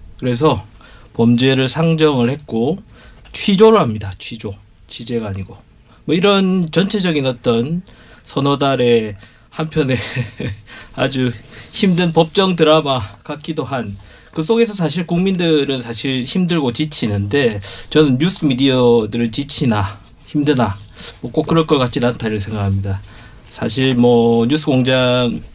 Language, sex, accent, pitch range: Korean, male, native, 110-140 Hz